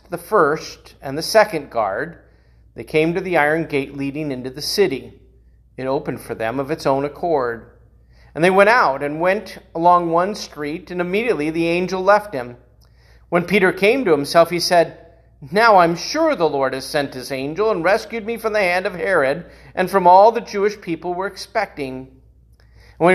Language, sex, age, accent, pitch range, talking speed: English, male, 40-59, American, 145-205 Hz, 185 wpm